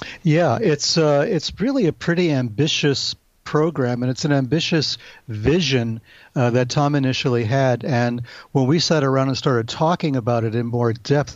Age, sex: 50-69, male